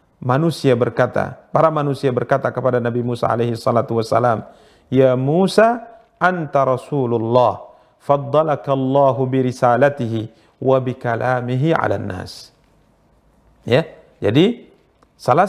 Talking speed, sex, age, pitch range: 100 wpm, male, 40-59, 120-155 Hz